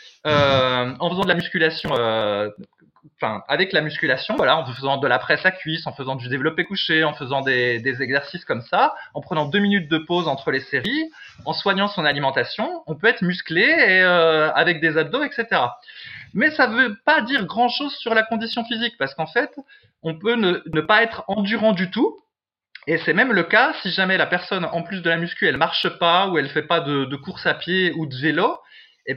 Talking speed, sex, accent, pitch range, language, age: 220 wpm, male, French, 155-215 Hz, French, 20-39